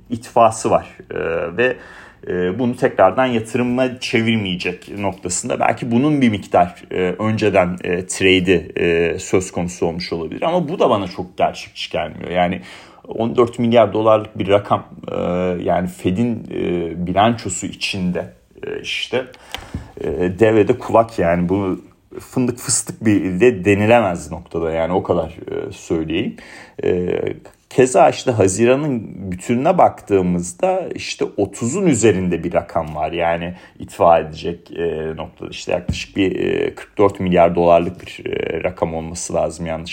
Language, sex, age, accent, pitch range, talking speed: Turkish, male, 40-59, native, 90-125 Hz, 130 wpm